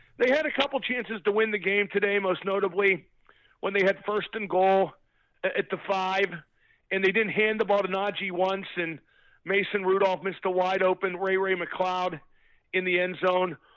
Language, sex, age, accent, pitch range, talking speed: English, male, 50-69, American, 195-245 Hz, 190 wpm